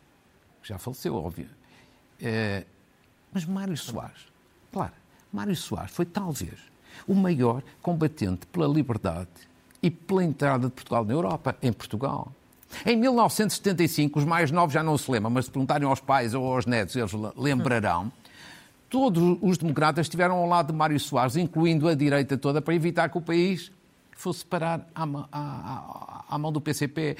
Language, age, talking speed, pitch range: Portuguese, 50-69, 155 wpm, 145-195 Hz